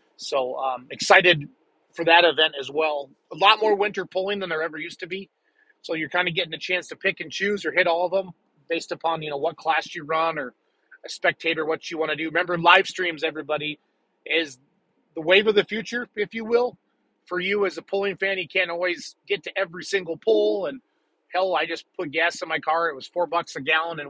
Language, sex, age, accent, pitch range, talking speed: English, male, 30-49, American, 155-190 Hz, 235 wpm